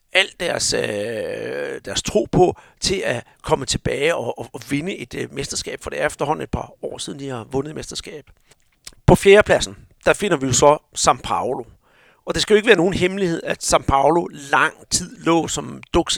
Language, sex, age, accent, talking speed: Danish, male, 60-79, native, 195 wpm